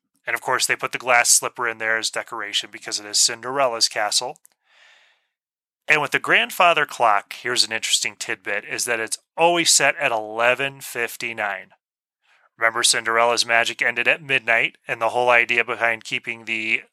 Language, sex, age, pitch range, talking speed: English, male, 30-49, 115-145 Hz, 165 wpm